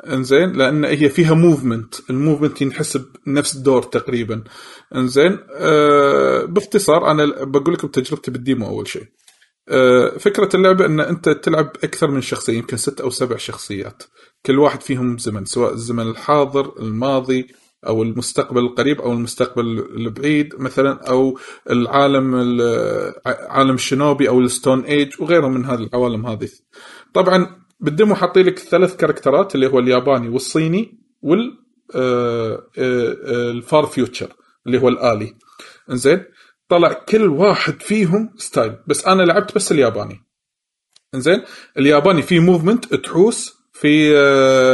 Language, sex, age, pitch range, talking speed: Arabic, male, 30-49, 130-175 Hz, 125 wpm